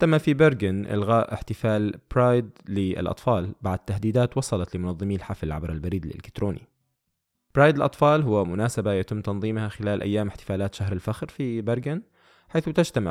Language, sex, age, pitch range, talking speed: Arabic, male, 20-39, 95-130 Hz, 135 wpm